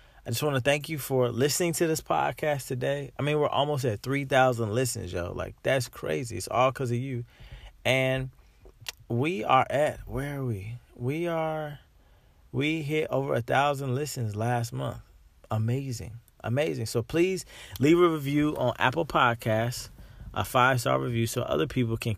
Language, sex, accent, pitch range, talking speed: English, male, American, 110-130 Hz, 165 wpm